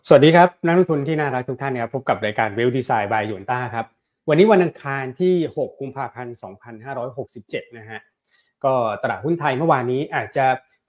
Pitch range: 115-140 Hz